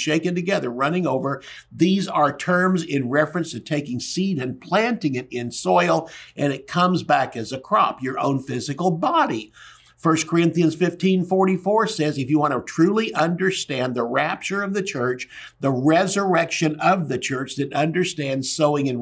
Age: 50-69